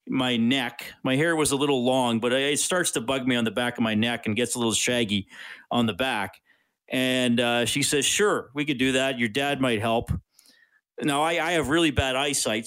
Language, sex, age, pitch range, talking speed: English, male, 40-59, 115-140 Hz, 225 wpm